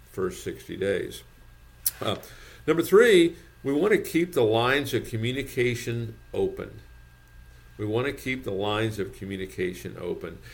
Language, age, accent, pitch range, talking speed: English, 50-69, American, 100-125 Hz, 135 wpm